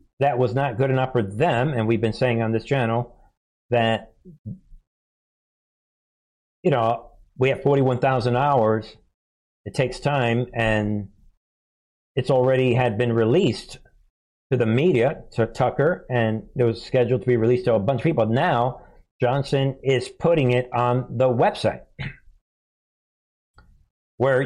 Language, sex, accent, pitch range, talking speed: English, male, American, 115-135 Hz, 135 wpm